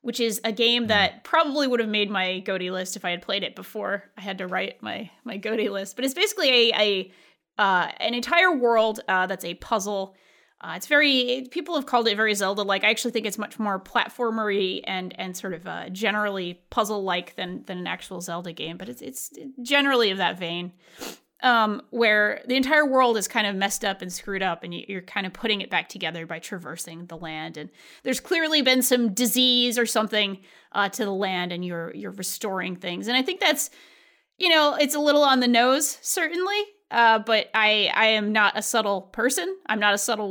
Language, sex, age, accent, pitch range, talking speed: English, female, 20-39, American, 190-250 Hz, 215 wpm